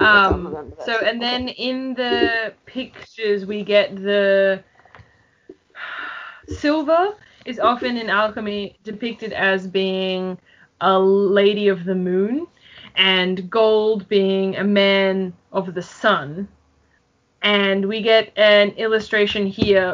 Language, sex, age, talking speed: English, female, 20-39, 110 wpm